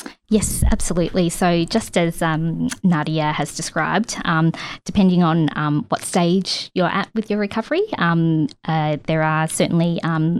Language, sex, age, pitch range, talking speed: English, female, 20-39, 160-190 Hz, 150 wpm